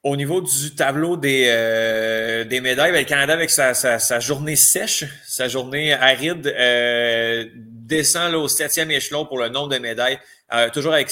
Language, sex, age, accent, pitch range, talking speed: French, male, 20-39, Canadian, 115-150 Hz, 185 wpm